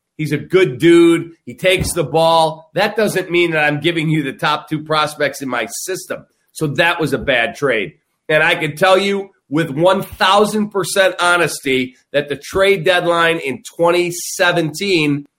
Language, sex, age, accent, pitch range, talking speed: English, male, 40-59, American, 145-180 Hz, 165 wpm